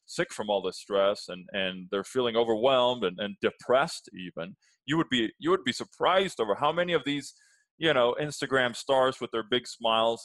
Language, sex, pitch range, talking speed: English, male, 105-150 Hz, 200 wpm